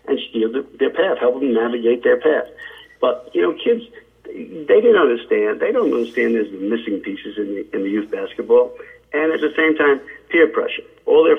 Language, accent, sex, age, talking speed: English, American, male, 50-69, 205 wpm